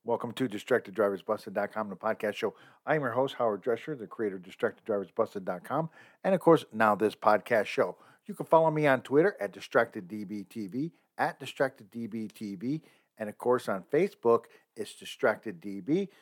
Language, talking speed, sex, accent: English, 150 wpm, male, American